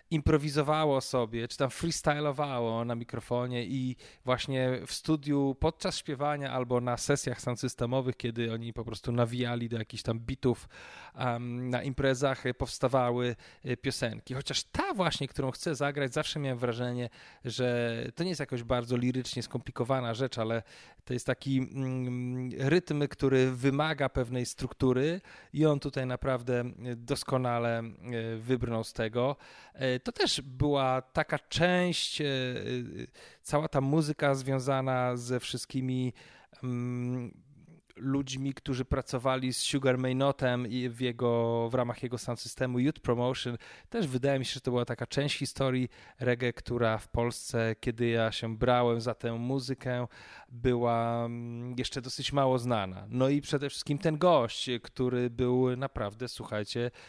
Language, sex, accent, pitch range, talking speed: Polish, male, native, 120-135 Hz, 135 wpm